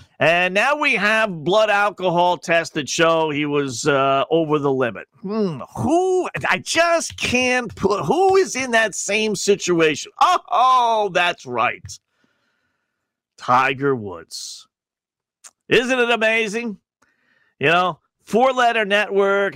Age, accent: 50-69, American